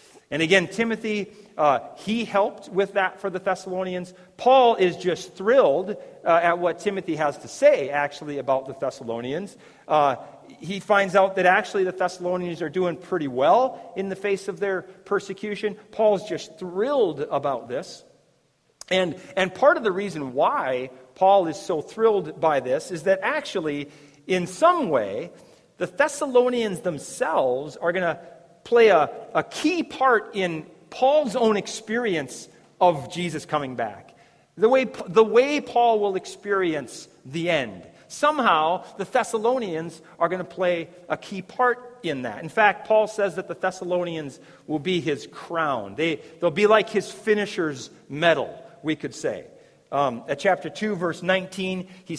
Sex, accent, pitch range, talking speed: male, American, 160-215 Hz, 155 wpm